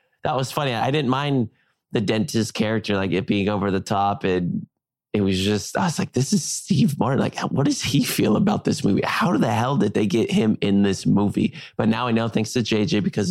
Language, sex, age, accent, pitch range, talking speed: English, male, 20-39, American, 100-120 Hz, 235 wpm